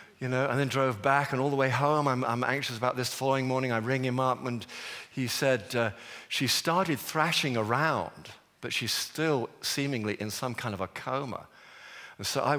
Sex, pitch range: male, 120-145 Hz